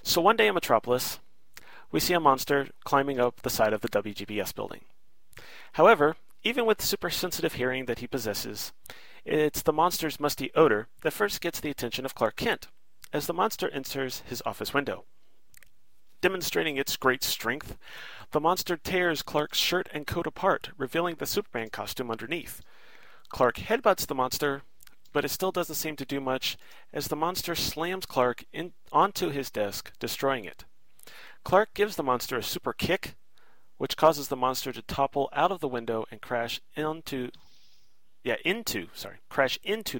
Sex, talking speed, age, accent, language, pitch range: male, 160 wpm, 30-49, American, English, 120-170 Hz